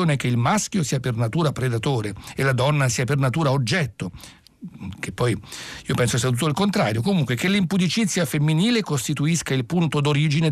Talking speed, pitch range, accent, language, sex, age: 170 wpm, 115-145 Hz, native, Italian, male, 60-79